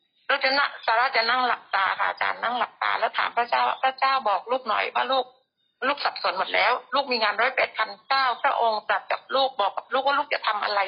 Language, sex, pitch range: Thai, female, 210-270 Hz